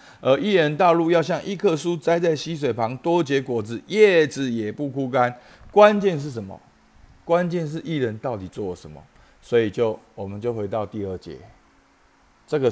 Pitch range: 105-165 Hz